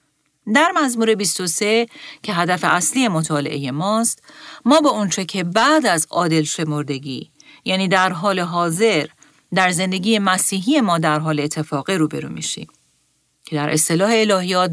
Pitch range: 155-200 Hz